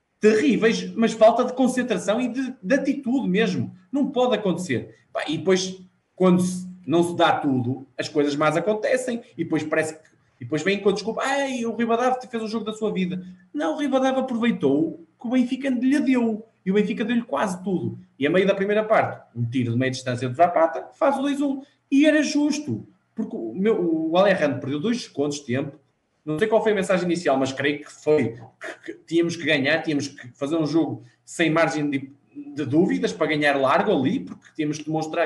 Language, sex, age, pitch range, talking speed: Portuguese, male, 20-39, 160-230 Hz, 205 wpm